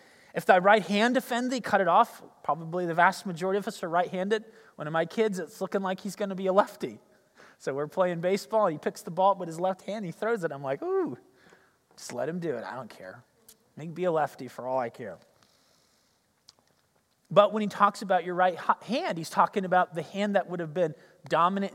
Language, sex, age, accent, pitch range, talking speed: English, male, 30-49, American, 175-225 Hz, 235 wpm